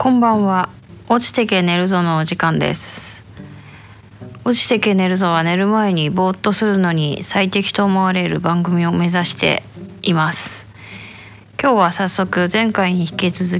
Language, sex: Japanese, female